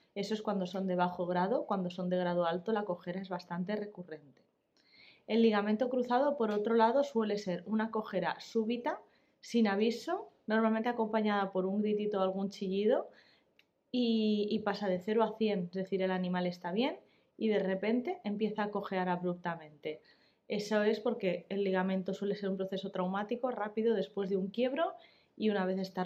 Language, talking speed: Spanish, 175 wpm